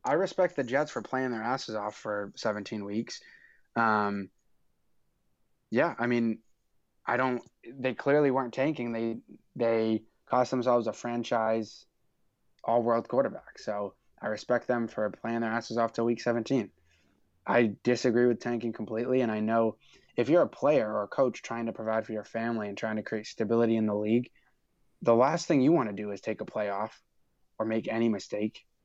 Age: 20-39